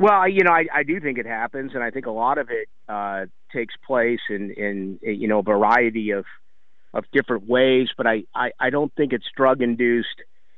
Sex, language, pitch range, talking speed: male, English, 120-155 Hz, 215 wpm